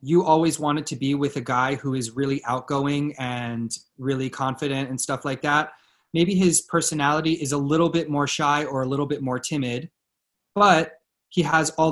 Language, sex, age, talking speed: English, male, 20-39, 190 wpm